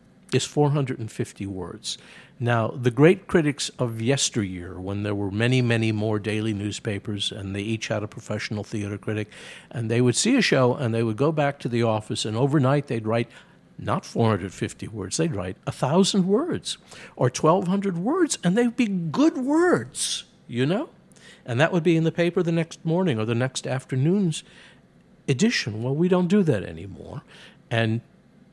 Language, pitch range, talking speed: English, 110-170 Hz, 175 wpm